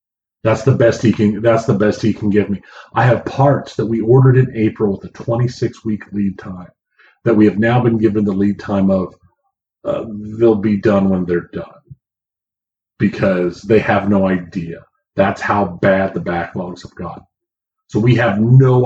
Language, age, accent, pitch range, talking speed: English, 40-59, American, 100-120 Hz, 190 wpm